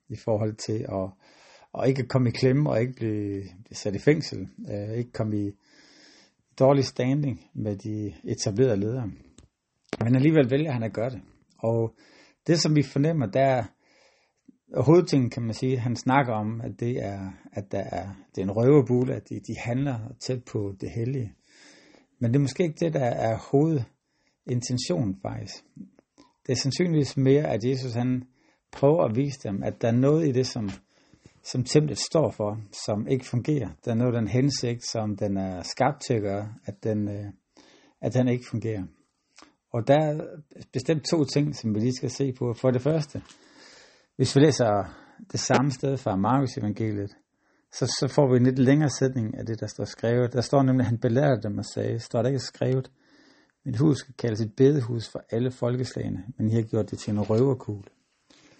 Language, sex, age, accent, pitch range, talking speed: Danish, male, 60-79, native, 110-135 Hz, 185 wpm